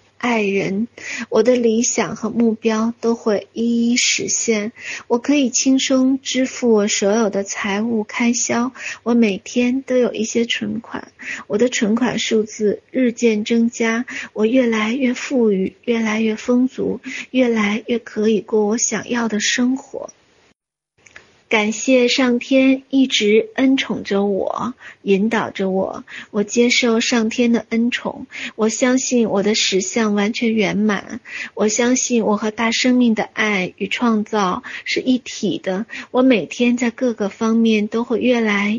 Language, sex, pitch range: Chinese, female, 210-245 Hz